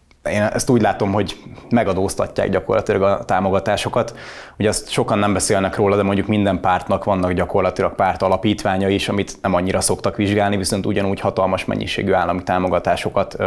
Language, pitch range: English, 95-105 Hz